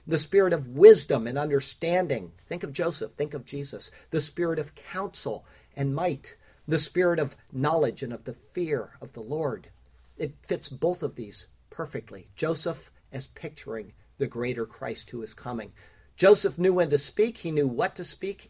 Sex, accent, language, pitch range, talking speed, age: male, American, English, 125-170 Hz, 175 wpm, 50-69